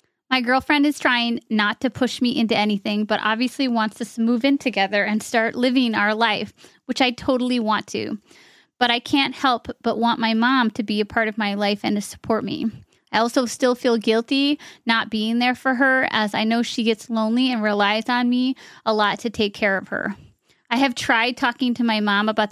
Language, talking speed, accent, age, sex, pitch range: English, 220 wpm, American, 30-49, female, 210-245 Hz